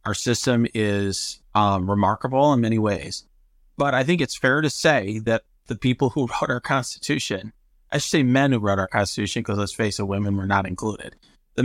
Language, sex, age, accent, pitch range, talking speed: English, male, 40-59, American, 115-150 Hz, 200 wpm